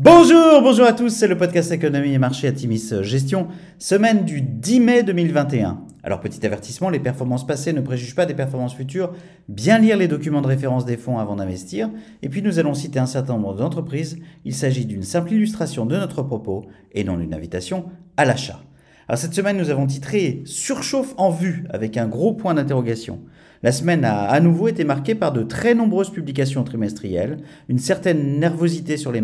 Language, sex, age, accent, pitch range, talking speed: French, male, 40-59, French, 125-180 Hz, 195 wpm